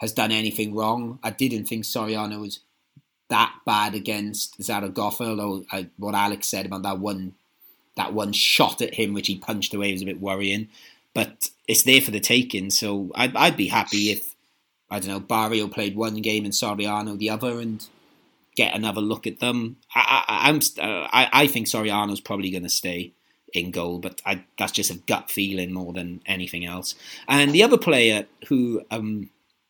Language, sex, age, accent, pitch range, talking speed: English, male, 30-49, British, 100-115 Hz, 190 wpm